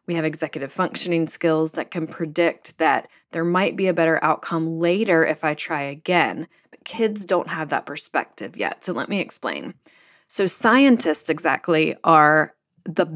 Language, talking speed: English, 165 wpm